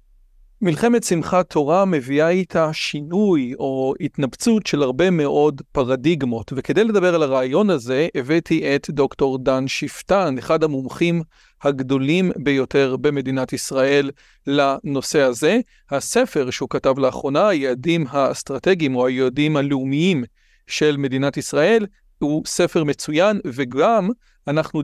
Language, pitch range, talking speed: Hebrew, 140-180 Hz, 115 wpm